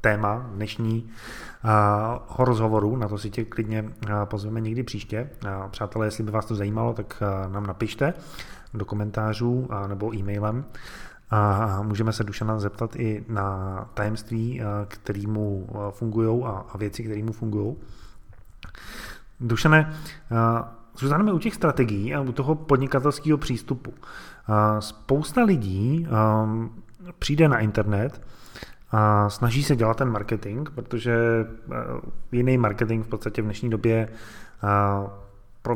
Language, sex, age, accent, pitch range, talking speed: Czech, male, 20-39, native, 105-120 Hz, 115 wpm